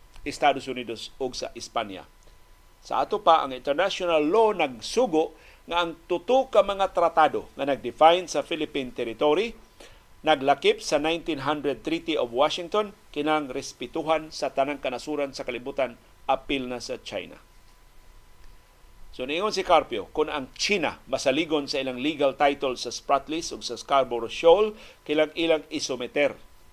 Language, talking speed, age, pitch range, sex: Filipino, 135 wpm, 50-69, 120-160 Hz, male